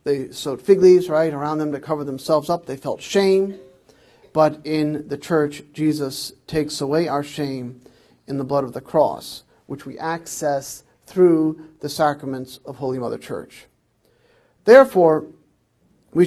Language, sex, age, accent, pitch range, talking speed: English, male, 50-69, American, 145-180 Hz, 150 wpm